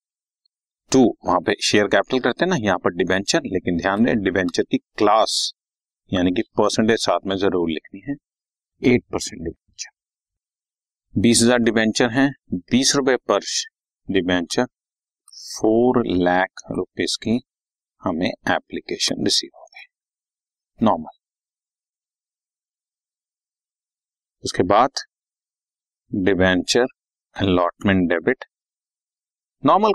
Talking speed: 100 wpm